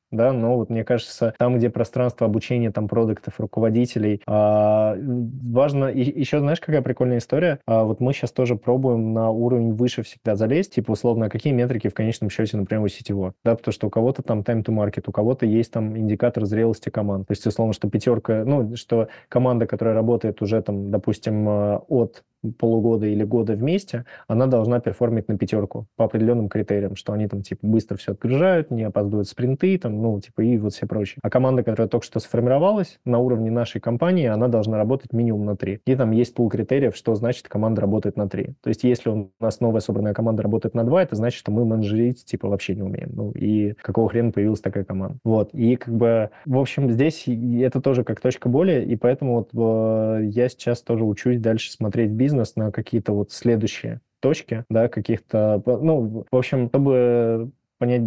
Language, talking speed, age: Russian, 190 wpm, 20-39